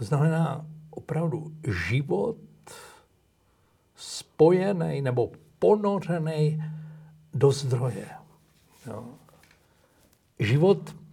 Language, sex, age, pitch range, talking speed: Slovak, male, 60-79, 125-170 Hz, 55 wpm